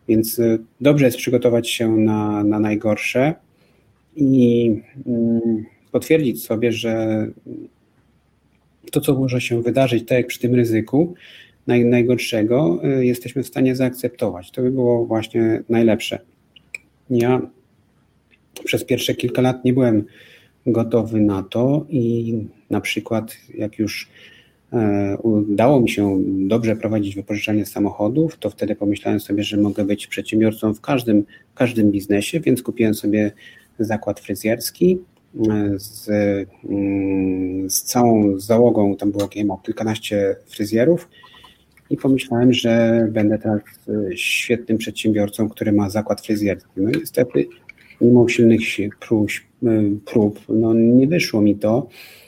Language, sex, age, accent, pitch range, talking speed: Polish, male, 30-49, native, 105-120 Hz, 115 wpm